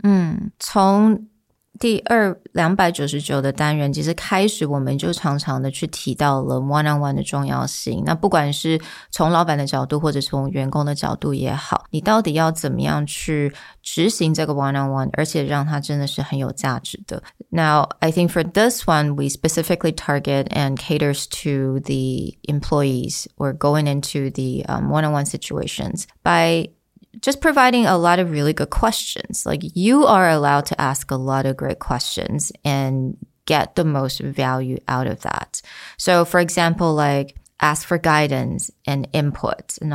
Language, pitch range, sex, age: Chinese, 140-170 Hz, female, 20-39